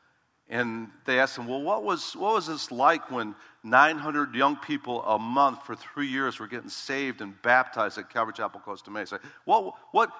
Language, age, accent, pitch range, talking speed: English, 50-69, American, 120-150 Hz, 200 wpm